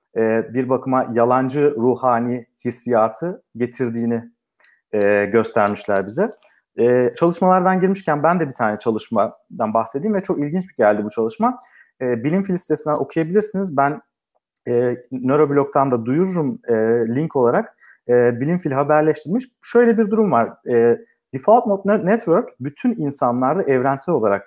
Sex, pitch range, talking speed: male, 120-195 Hz, 130 wpm